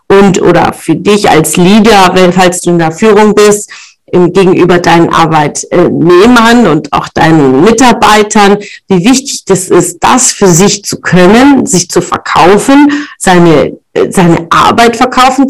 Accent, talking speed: German, 145 wpm